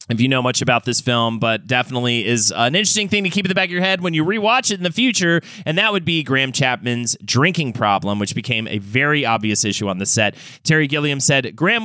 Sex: male